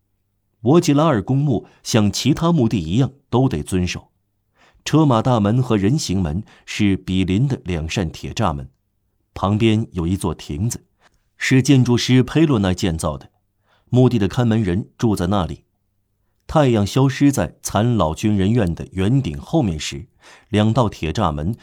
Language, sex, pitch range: Chinese, male, 95-125 Hz